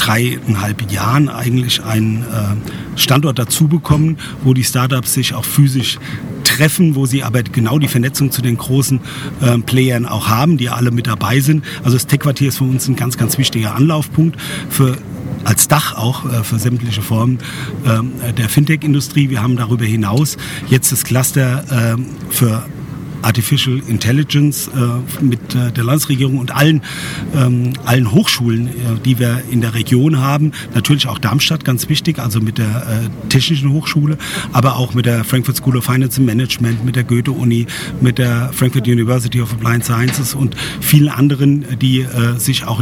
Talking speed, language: 160 wpm, German